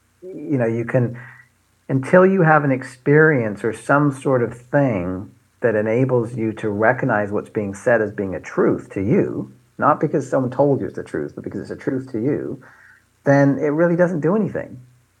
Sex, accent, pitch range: male, American, 105-135 Hz